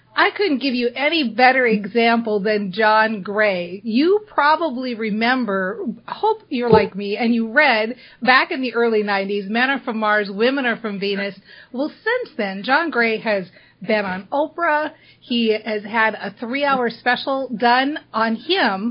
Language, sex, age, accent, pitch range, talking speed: English, female, 40-59, American, 220-280 Hz, 160 wpm